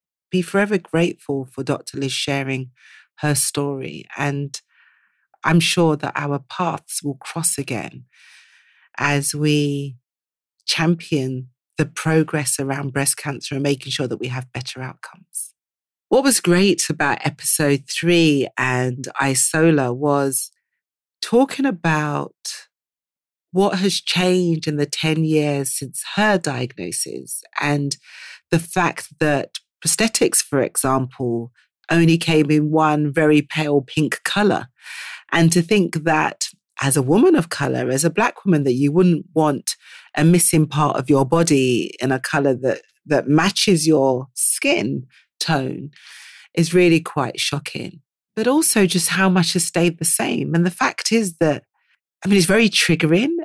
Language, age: English, 40-59